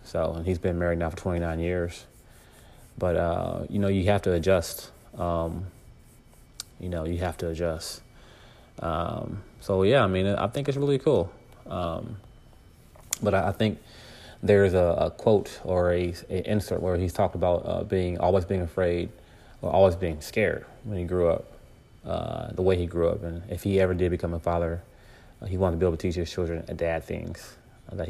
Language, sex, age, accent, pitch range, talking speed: English, male, 30-49, American, 85-100 Hz, 195 wpm